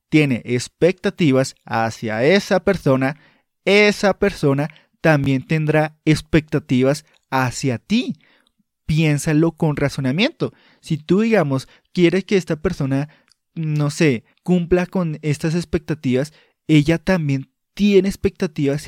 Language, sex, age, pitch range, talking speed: Spanish, male, 30-49, 140-185 Hz, 100 wpm